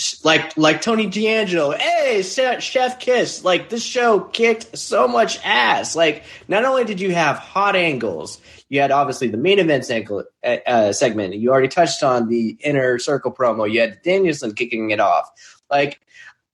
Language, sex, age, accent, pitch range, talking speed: English, male, 20-39, American, 125-180 Hz, 165 wpm